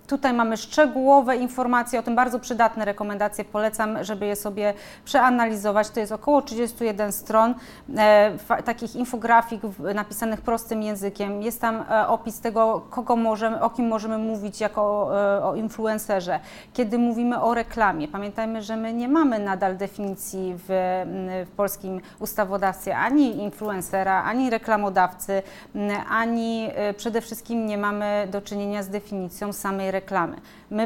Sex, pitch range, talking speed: female, 200-230 Hz, 135 wpm